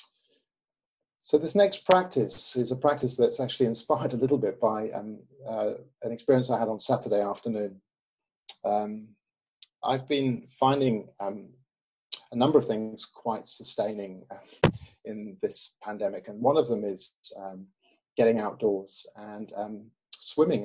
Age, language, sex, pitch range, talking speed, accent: 40-59, English, male, 105-130 Hz, 140 wpm, British